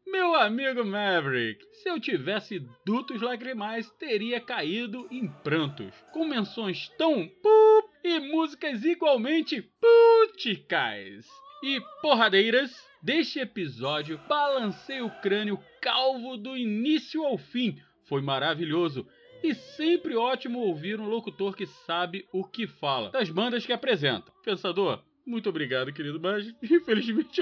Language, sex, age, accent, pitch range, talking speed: Portuguese, male, 40-59, Brazilian, 165-275 Hz, 120 wpm